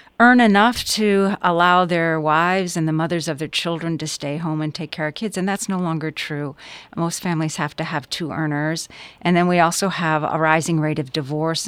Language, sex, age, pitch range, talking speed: English, female, 50-69, 155-185 Hz, 215 wpm